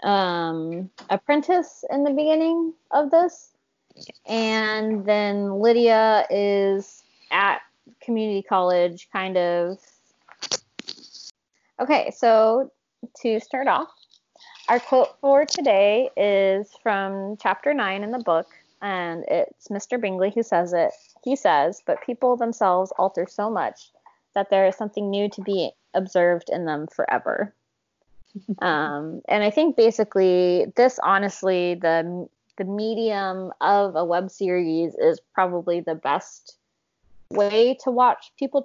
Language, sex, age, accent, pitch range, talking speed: English, female, 20-39, American, 185-225 Hz, 125 wpm